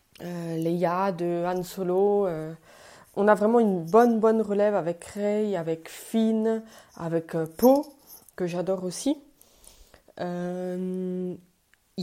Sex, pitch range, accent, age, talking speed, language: female, 170-225 Hz, French, 20-39, 120 wpm, French